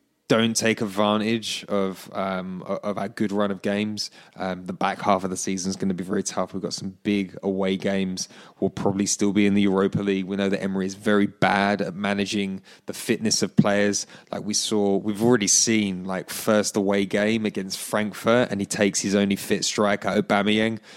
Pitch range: 100-115 Hz